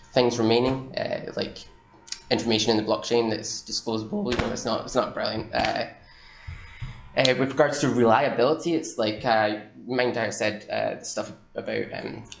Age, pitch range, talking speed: 10-29, 105-120 Hz, 165 wpm